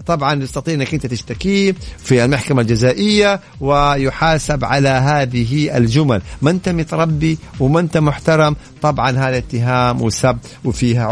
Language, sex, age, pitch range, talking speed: Arabic, male, 50-69, 130-170 Hz, 125 wpm